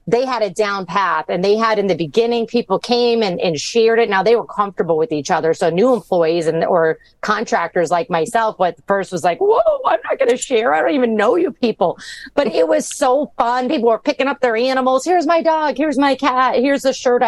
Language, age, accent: English, 30-49, American